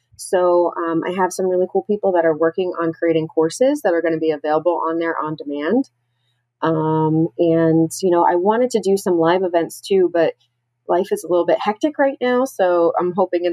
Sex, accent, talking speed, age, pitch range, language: female, American, 215 wpm, 30-49, 150-185 Hz, English